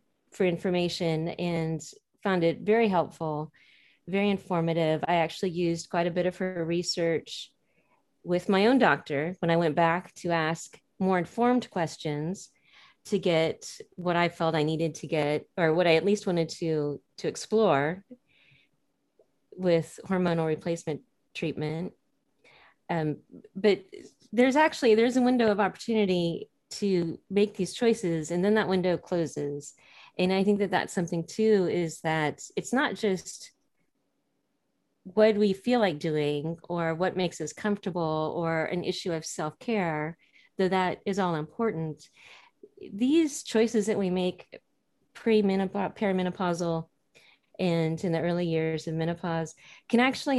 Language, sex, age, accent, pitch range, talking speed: English, female, 30-49, American, 165-200 Hz, 140 wpm